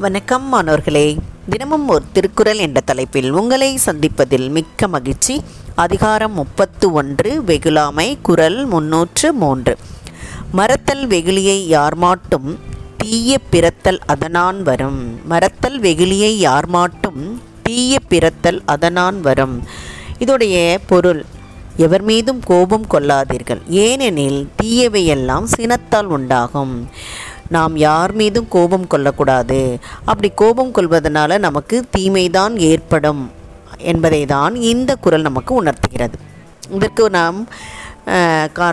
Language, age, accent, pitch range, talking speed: Tamil, 20-39, native, 145-205 Hz, 95 wpm